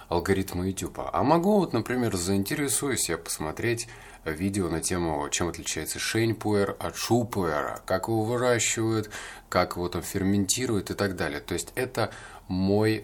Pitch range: 85-105 Hz